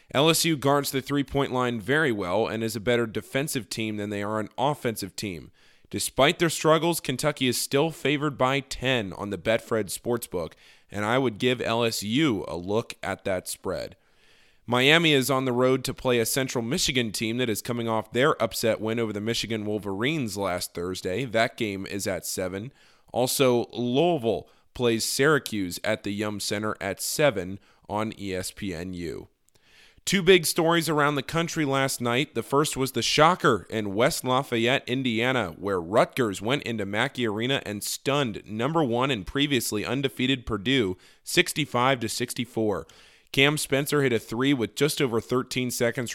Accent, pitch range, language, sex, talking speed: American, 110-135 Hz, English, male, 165 wpm